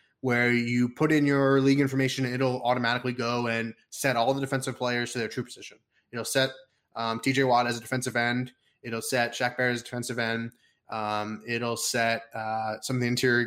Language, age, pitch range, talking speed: English, 20-39, 115-140 Hz, 200 wpm